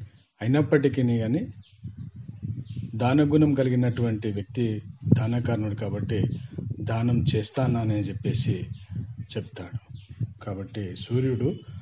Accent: native